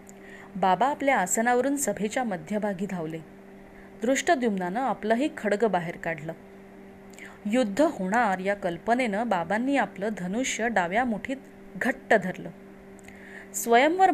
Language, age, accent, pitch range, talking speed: Marathi, 30-49, native, 190-250 Hz, 100 wpm